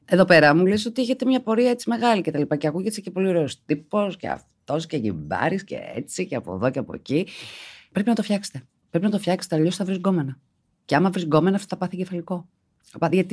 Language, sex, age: Greek, female, 30-49